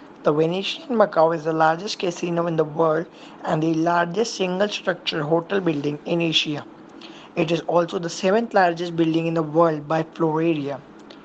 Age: 20-39